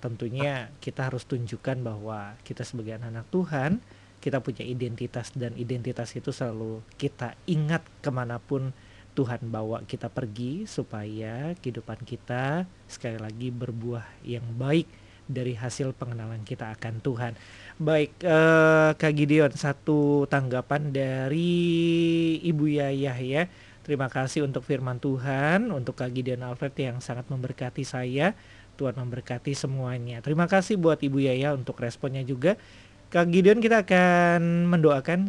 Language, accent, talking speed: Indonesian, native, 130 wpm